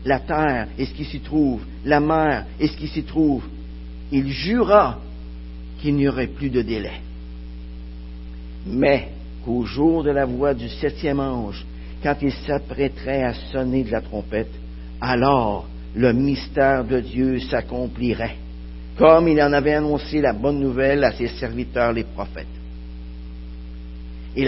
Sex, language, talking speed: male, French, 145 wpm